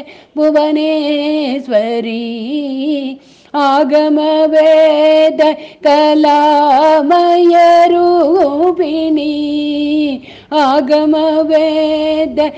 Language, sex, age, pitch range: Tamil, female, 50-69, 275-315 Hz